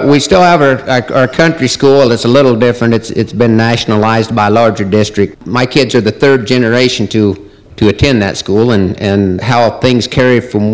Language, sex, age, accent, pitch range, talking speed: English, male, 50-69, American, 105-130 Hz, 200 wpm